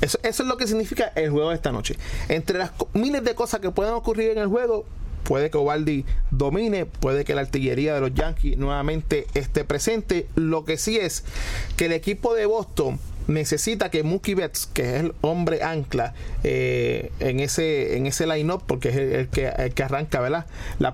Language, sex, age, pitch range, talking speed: English, male, 30-49, 140-180 Hz, 205 wpm